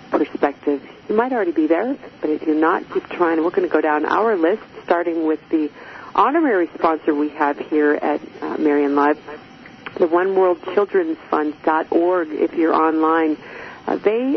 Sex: female